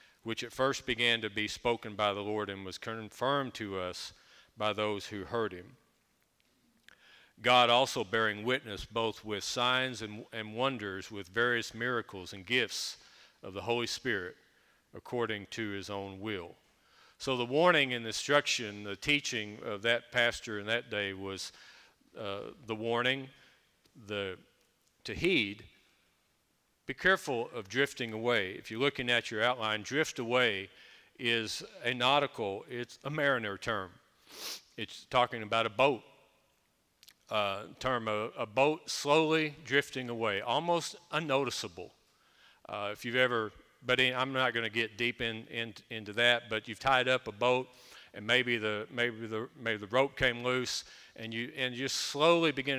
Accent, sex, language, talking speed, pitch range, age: American, male, English, 155 wpm, 110-130 Hz, 40-59